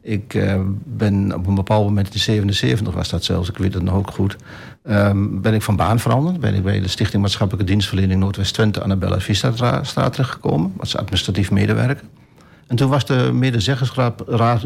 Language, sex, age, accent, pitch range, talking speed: Dutch, male, 60-79, Dutch, 100-120 Hz, 175 wpm